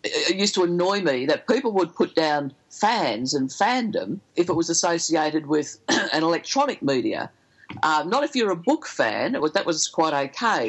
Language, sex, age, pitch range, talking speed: English, female, 50-69, 155-205 Hz, 180 wpm